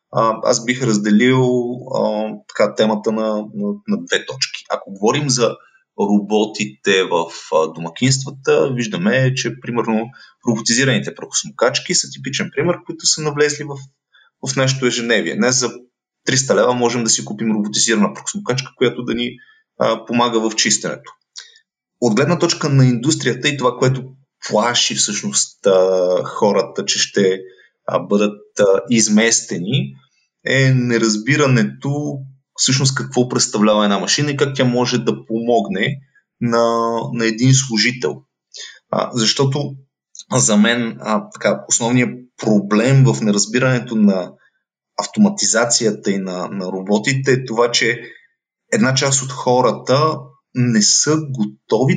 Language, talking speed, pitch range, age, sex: Bulgarian, 125 wpm, 110-140 Hz, 30-49, male